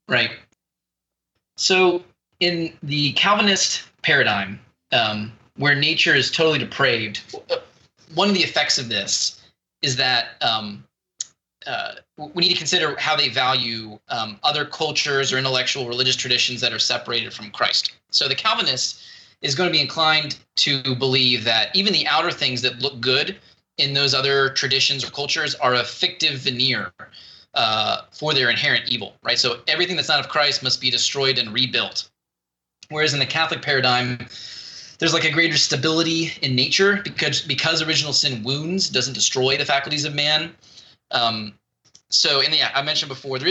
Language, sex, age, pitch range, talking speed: English, male, 20-39, 125-155 Hz, 160 wpm